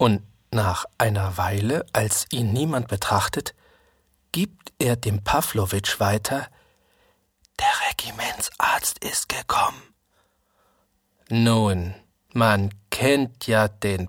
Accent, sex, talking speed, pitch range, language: German, male, 95 wpm, 100-140 Hz, German